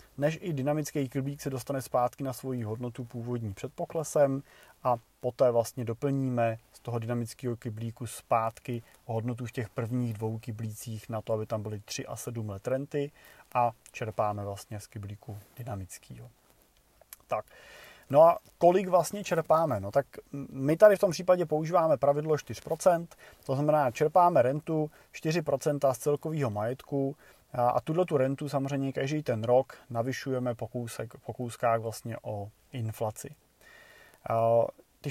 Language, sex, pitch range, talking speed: Czech, male, 115-140 Hz, 140 wpm